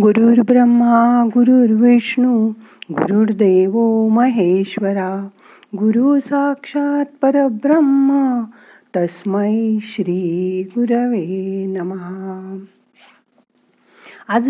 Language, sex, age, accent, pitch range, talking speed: Marathi, female, 50-69, native, 185-250 Hz, 55 wpm